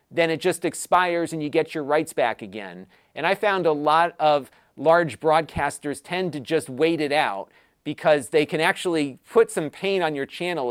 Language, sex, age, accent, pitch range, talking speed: English, male, 40-59, American, 150-185 Hz, 195 wpm